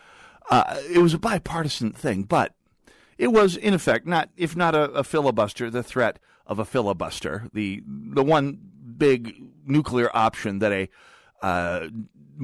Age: 50-69